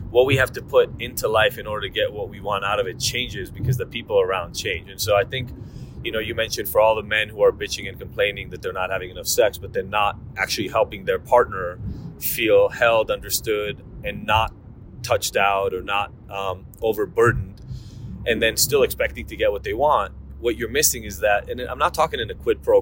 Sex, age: male, 30-49